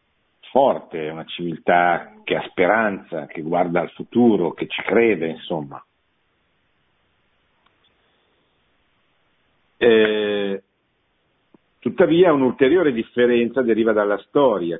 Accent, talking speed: native, 90 wpm